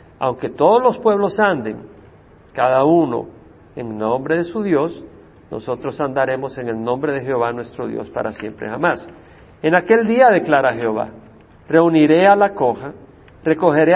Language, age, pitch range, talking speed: Spanish, 50-69, 125-195 Hz, 145 wpm